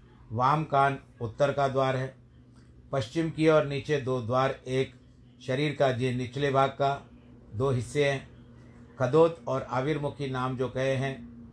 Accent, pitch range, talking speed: native, 115-145 Hz, 150 wpm